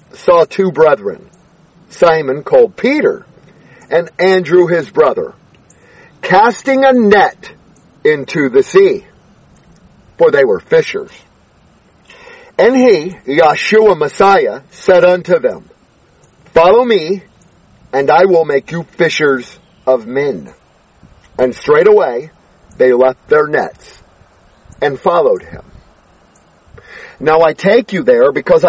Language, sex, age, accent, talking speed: English, male, 50-69, American, 110 wpm